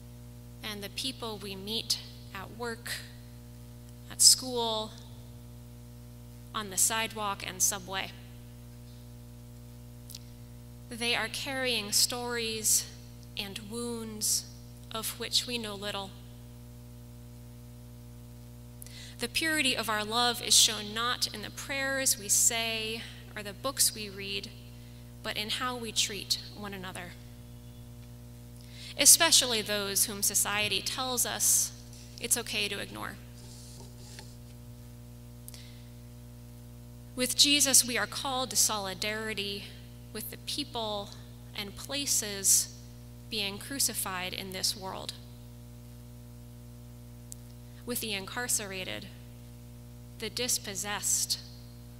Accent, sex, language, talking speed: American, female, English, 95 wpm